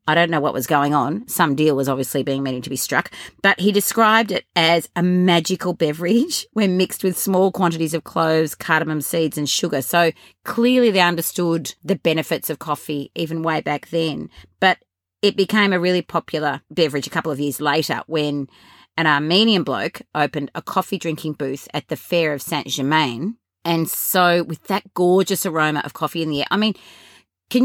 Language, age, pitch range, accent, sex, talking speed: English, 30-49, 150-190 Hz, Australian, female, 190 wpm